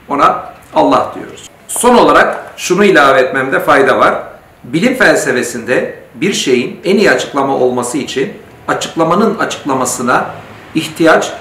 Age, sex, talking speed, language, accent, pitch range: 60-79, male, 115 wpm, Turkish, native, 135-200 Hz